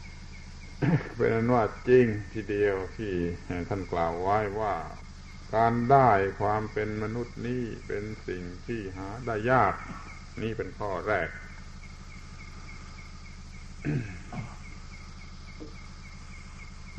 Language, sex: Thai, male